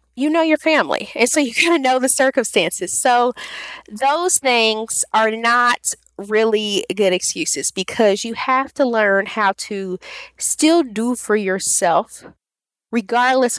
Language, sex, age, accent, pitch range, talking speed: English, female, 20-39, American, 190-245 Hz, 140 wpm